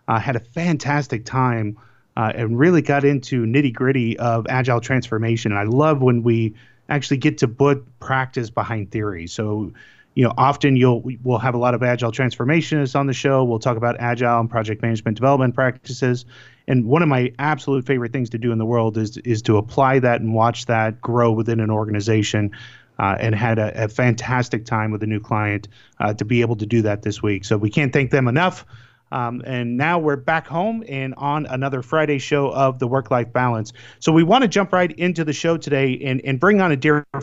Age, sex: 30-49, male